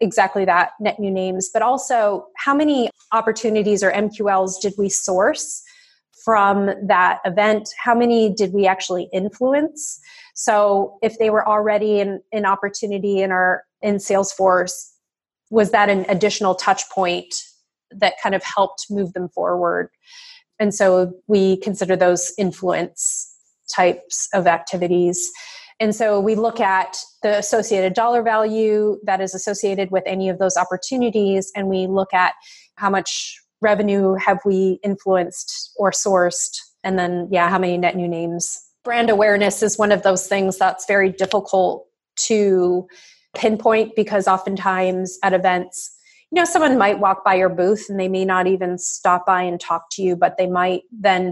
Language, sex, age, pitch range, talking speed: English, female, 30-49, 185-215 Hz, 155 wpm